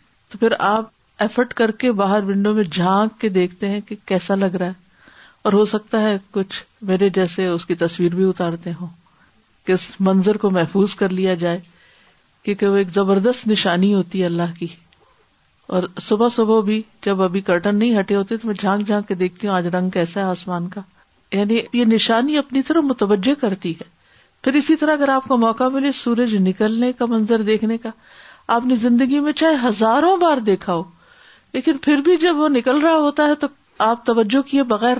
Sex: female